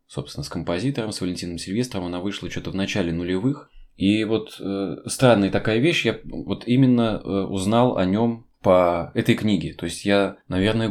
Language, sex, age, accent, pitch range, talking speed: Russian, male, 20-39, native, 90-110 Hz, 175 wpm